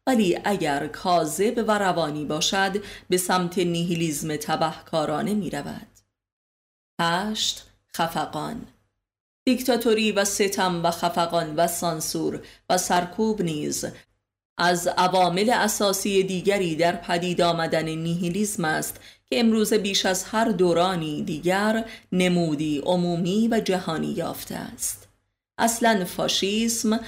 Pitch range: 165-200 Hz